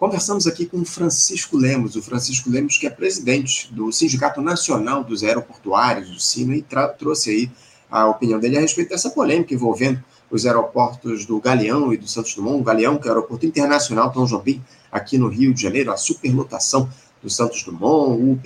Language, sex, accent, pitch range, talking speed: Portuguese, male, Brazilian, 115-145 Hz, 190 wpm